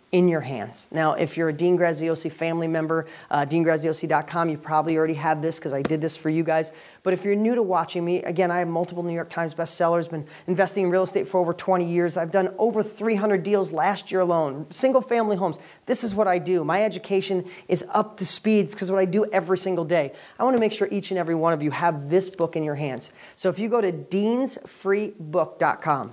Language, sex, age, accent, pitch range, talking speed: English, male, 40-59, American, 160-195 Hz, 230 wpm